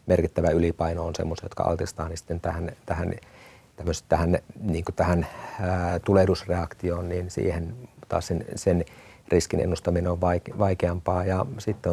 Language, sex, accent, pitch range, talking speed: Finnish, male, native, 85-100 Hz, 115 wpm